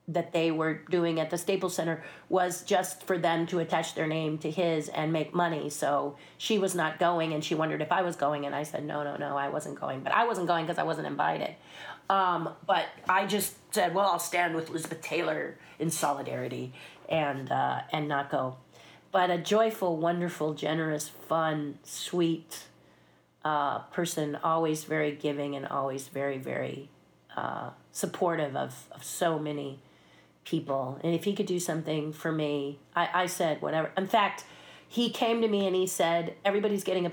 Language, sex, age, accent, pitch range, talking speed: English, female, 40-59, American, 145-175 Hz, 185 wpm